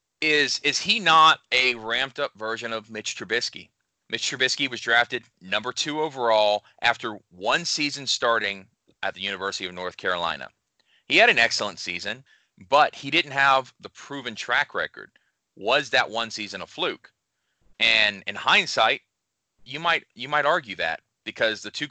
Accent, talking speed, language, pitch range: American, 160 wpm, English, 105-140 Hz